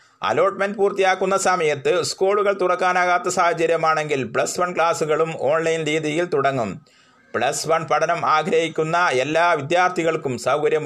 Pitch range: 150-180 Hz